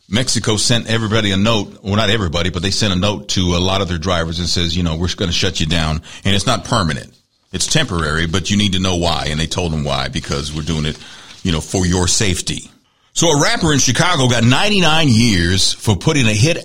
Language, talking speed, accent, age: English, 240 wpm, American, 50-69